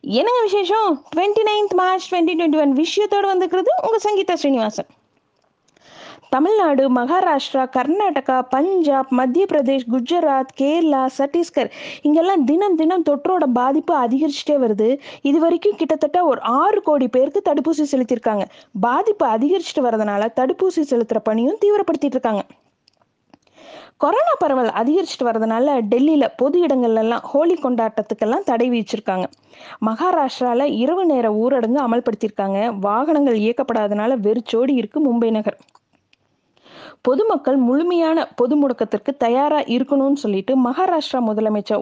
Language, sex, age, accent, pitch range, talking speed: Tamil, female, 20-39, native, 235-325 Hz, 100 wpm